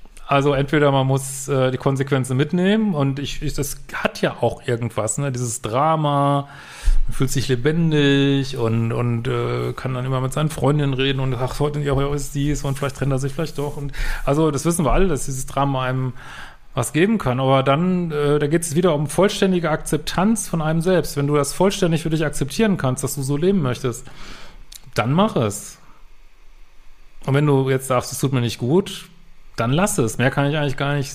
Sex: male